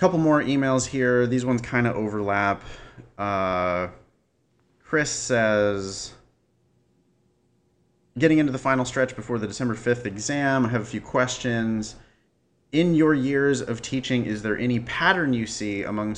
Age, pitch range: 30-49, 100-125 Hz